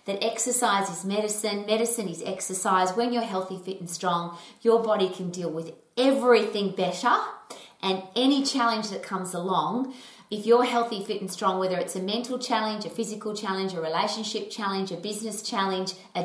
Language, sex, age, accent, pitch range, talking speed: English, female, 30-49, Australian, 185-235 Hz, 175 wpm